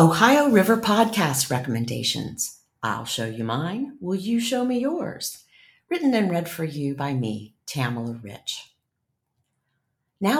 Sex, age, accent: female, 50-69, American